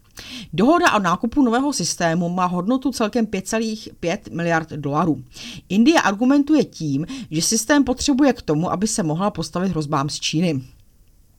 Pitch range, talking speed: 150-230 Hz, 135 wpm